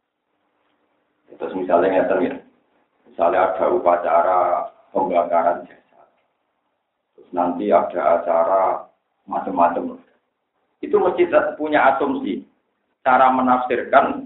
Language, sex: Indonesian, male